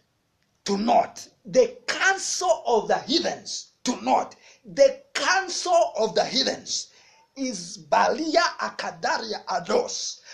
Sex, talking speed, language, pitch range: male, 105 wpm, English, 240-365 Hz